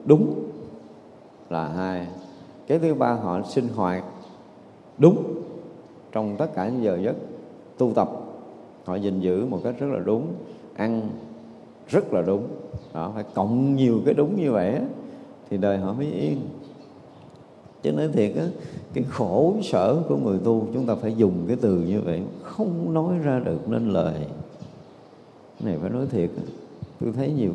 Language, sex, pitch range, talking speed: Vietnamese, male, 100-140 Hz, 165 wpm